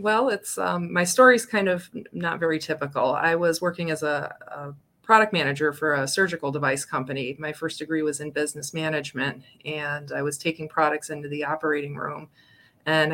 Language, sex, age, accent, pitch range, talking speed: English, female, 20-39, American, 145-170 Hz, 185 wpm